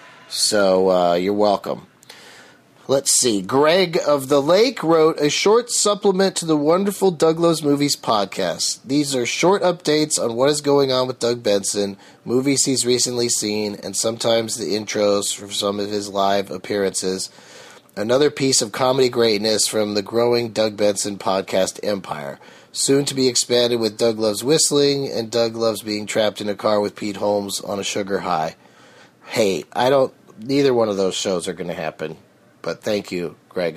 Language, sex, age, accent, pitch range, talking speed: English, male, 30-49, American, 110-165 Hz, 175 wpm